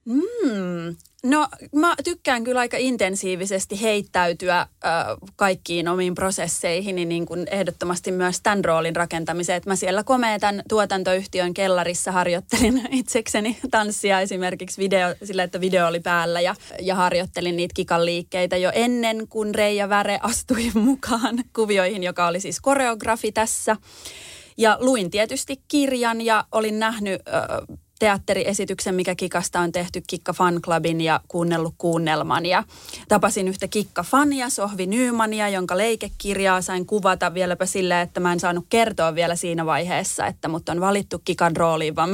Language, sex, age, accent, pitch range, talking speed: Finnish, female, 30-49, native, 175-220 Hz, 140 wpm